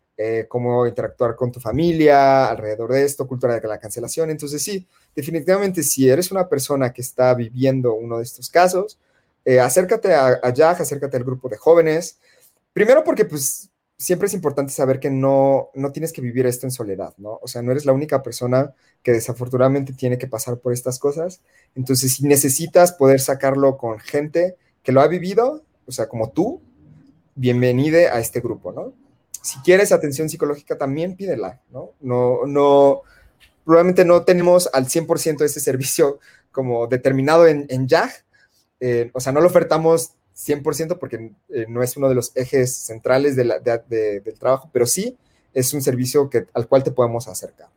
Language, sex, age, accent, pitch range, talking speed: Spanish, male, 30-49, Mexican, 125-160 Hz, 180 wpm